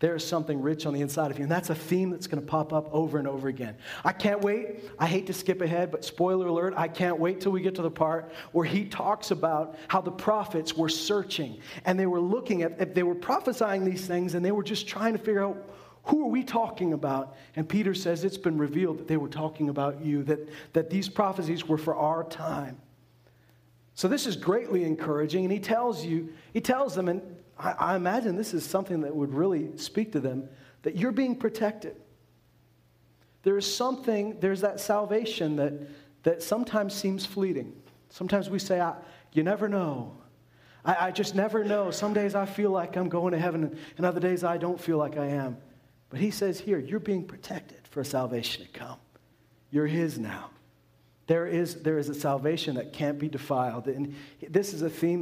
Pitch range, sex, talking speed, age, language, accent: 150-195 Hz, male, 210 wpm, 40-59, English, American